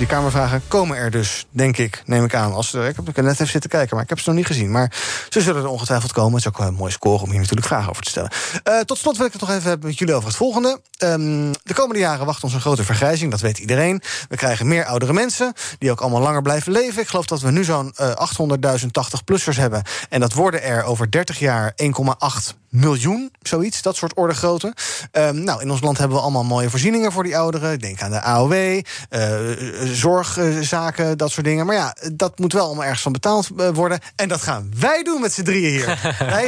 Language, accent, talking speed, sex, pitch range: Dutch, Dutch, 245 wpm, male, 130-180 Hz